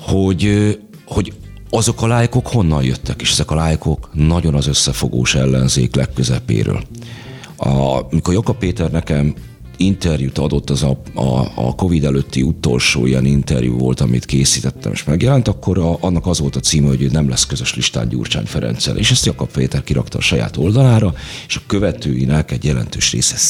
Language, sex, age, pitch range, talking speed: Hungarian, male, 40-59, 70-105 Hz, 165 wpm